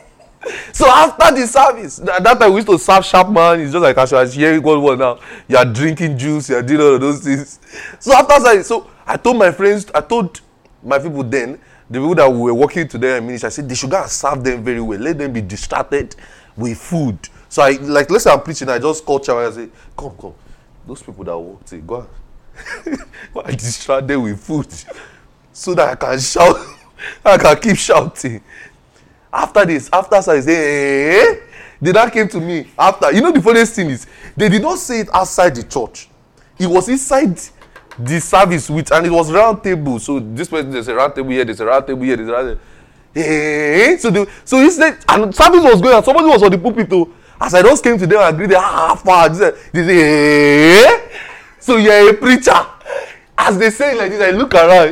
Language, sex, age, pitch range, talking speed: English, male, 30-49, 135-220 Hz, 225 wpm